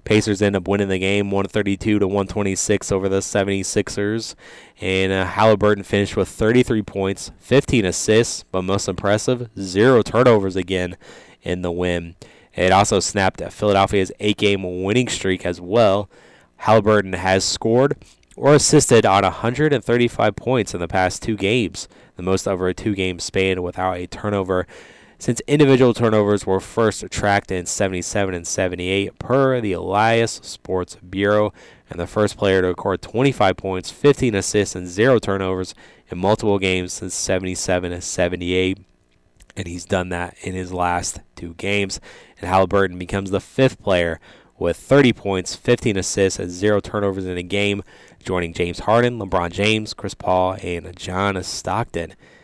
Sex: male